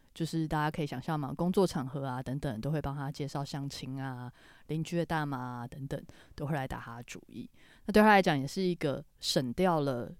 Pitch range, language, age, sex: 135-175 Hz, Chinese, 20-39, female